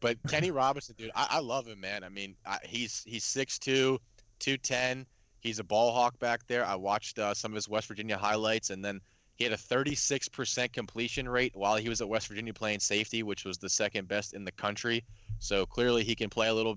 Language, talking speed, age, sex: English, 220 wpm, 20-39, male